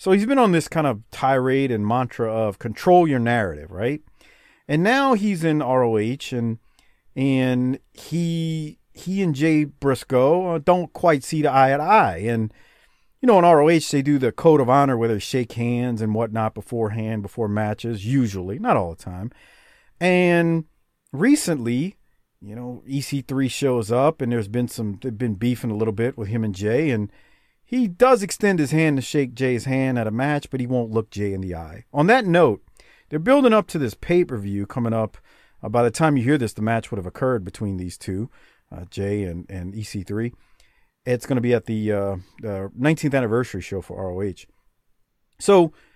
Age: 40-59